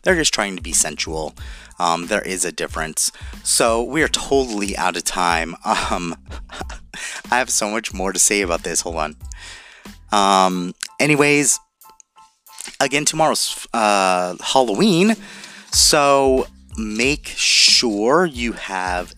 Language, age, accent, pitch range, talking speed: English, 30-49, American, 80-135 Hz, 130 wpm